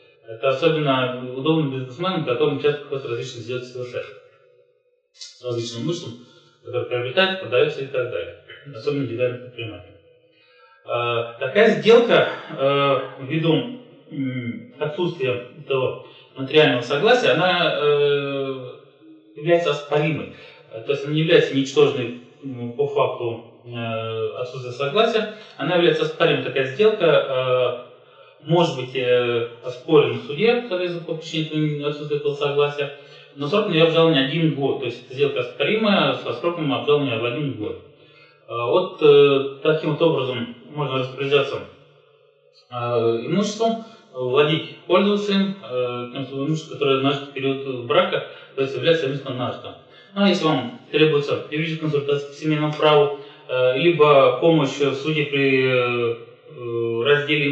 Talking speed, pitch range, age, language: 120 wpm, 130-180 Hz, 30-49, Russian